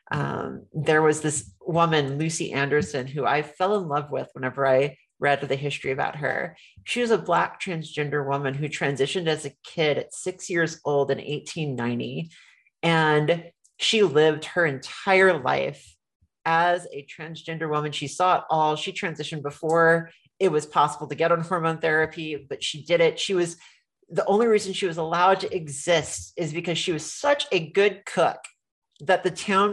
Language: English